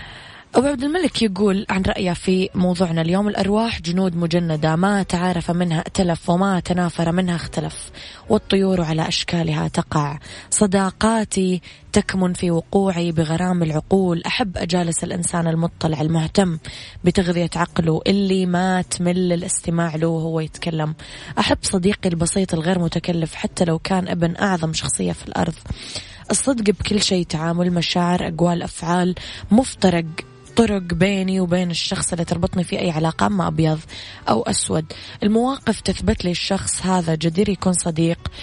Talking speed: 135 wpm